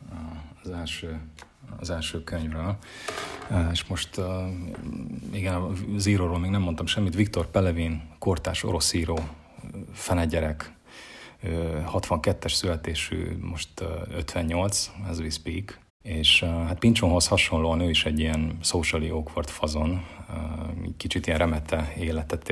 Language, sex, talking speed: Hungarian, male, 115 wpm